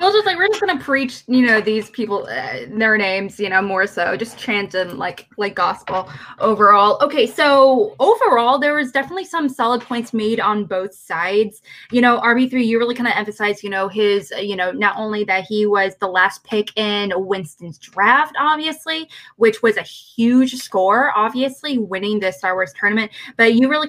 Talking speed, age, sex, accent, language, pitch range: 190 wpm, 20-39, female, American, English, 195-240 Hz